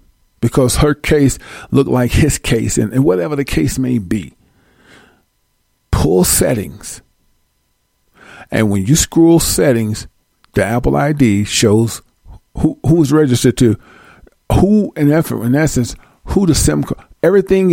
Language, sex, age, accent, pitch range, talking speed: English, male, 50-69, American, 110-155 Hz, 130 wpm